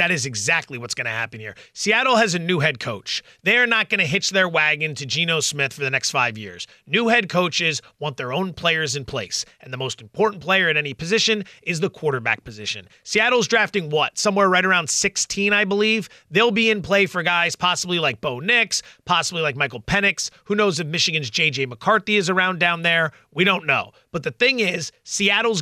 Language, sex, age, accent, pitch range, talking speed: English, male, 30-49, American, 150-215 Hz, 215 wpm